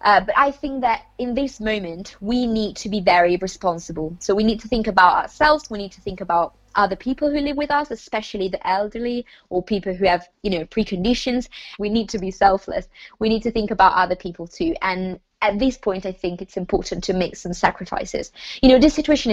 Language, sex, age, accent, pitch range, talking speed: English, female, 20-39, British, 190-255 Hz, 220 wpm